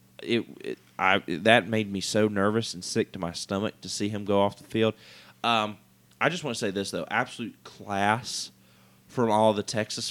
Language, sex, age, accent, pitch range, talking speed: English, male, 20-39, American, 90-115 Hz, 210 wpm